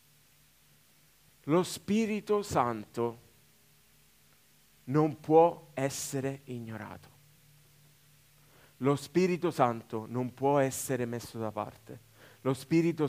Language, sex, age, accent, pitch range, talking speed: Italian, male, 30-49, native, 125-160 Hz, 85 wpm